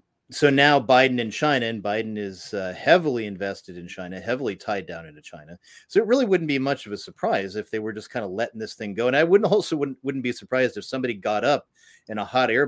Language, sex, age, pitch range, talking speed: English, male, 30-49, 105-135 Hz, 250 wpm